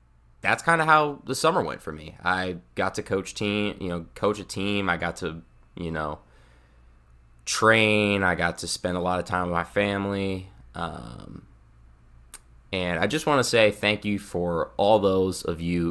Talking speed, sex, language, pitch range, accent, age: 190 wpm, male, English, 80-100 Hz, American, 20-39